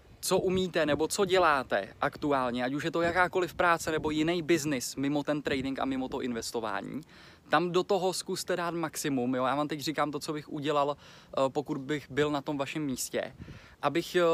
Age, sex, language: 20-39, male, Czech